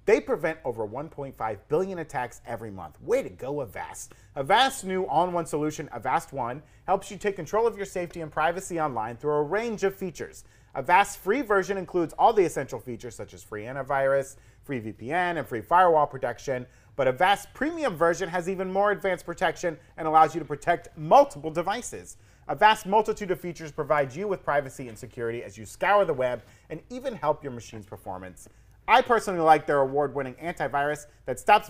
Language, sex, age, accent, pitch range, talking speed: English, male, 30-49, American, 120-180 Hz, 185 wpm